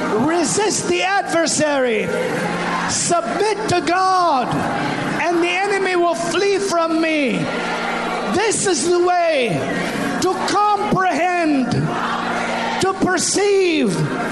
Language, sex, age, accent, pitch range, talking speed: English, male, 50-69, American, 340-400 Hz, 90 wpm